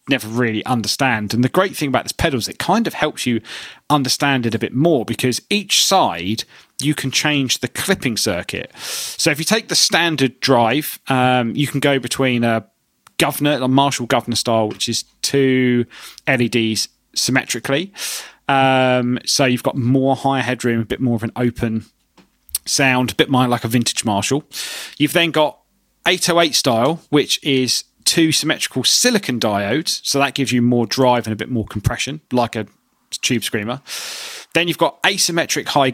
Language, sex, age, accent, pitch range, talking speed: English, male, 30-49, British, 115-140 Hz, 175 wpm